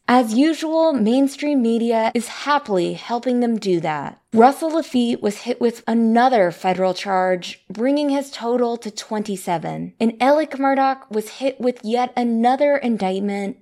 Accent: American